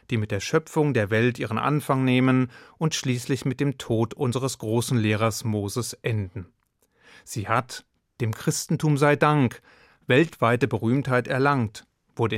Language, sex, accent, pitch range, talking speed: German, male, German, 115-145 Hz, 140 wpm